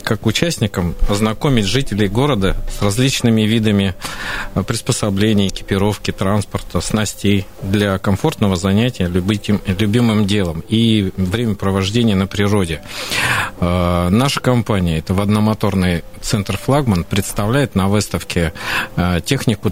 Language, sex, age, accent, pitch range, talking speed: Russian, male, 40-59, native, 90-110 Hz, 100 wpm